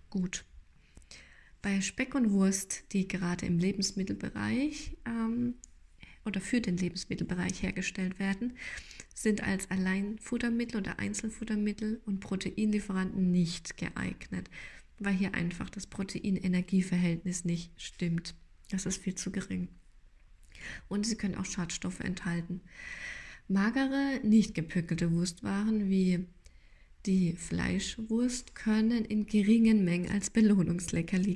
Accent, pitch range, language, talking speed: German, 180-220 Hz, German, 105 wpm